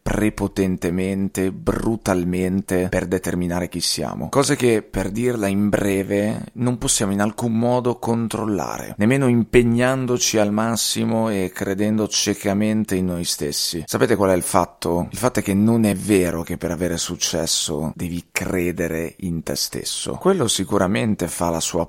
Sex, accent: male, native